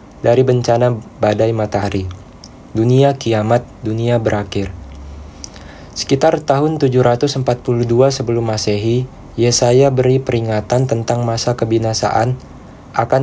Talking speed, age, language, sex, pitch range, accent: 90 wpm, 20-39, Indonesian, male, 110-125 Hz, native